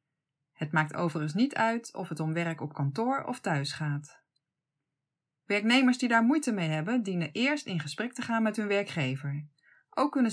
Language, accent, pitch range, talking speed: Dutch, Dutch, 155-225 Hz, 180 wpm